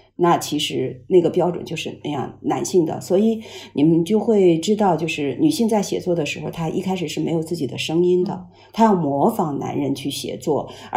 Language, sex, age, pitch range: Chinese, female, 50-69, 160-210 Hz